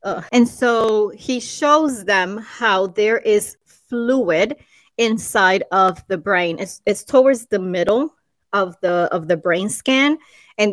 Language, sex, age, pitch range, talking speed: English, female, 30-49, 190-235 Hz, 140 wpm